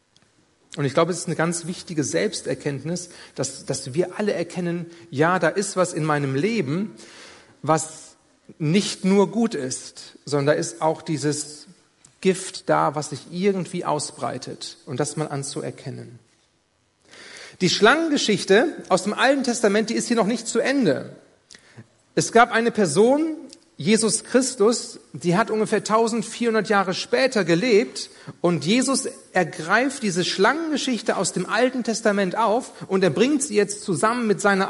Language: German